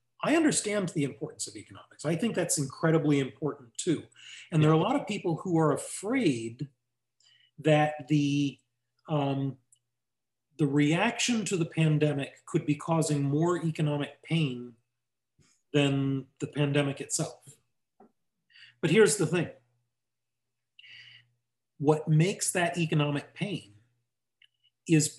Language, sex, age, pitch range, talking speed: English, male, 40-59, 125-175 Hz, 120 wpm